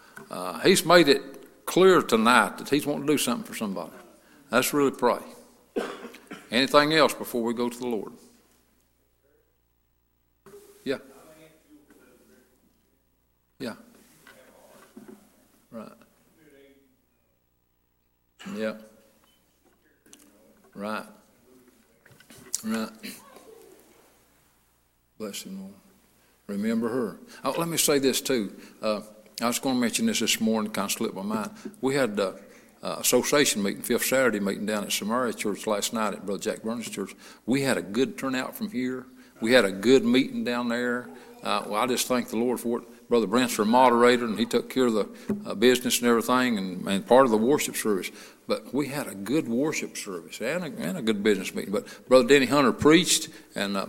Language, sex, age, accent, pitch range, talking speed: English, male, 60-79, American, 110-145 Hz, 155 wpm